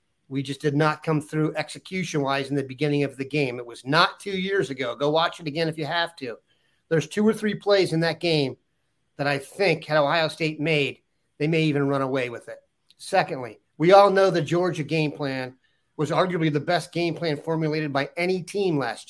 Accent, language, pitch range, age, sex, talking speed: American, English, 140-170 Hz, 40-59, male, 215 wpm